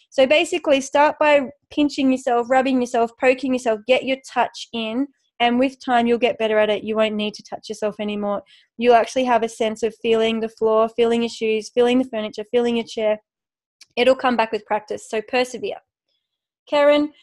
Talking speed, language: 190 wpm, English